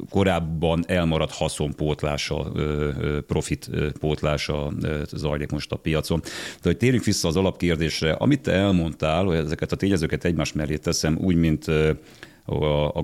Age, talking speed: 40-59, 120 wpm